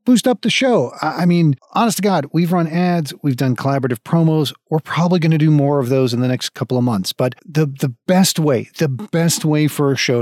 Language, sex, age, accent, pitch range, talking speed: English, male, 40-59, American, 125-165 Hz, 240 wpm